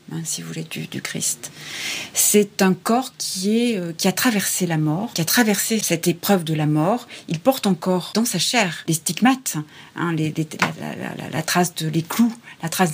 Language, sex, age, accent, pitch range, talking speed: French, female, 30-49, French, 170-225 Hz, 165 wpm